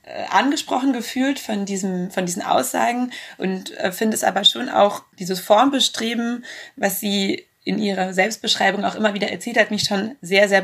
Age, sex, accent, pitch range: 30-49, female, German, 185-215 Hz